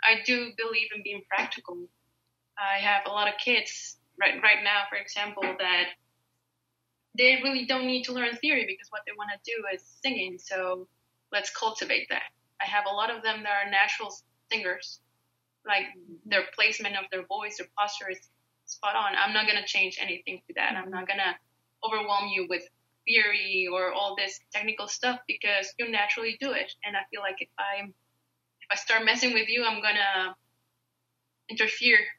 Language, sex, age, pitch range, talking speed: English, female, 20-39, 190-225 Hz, 185 wpm